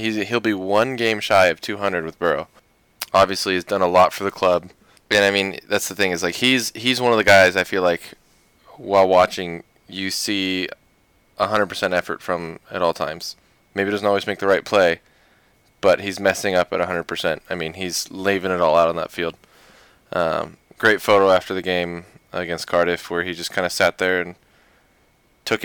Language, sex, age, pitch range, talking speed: English, male, 20-39, 90-100 Hz, 200 wpm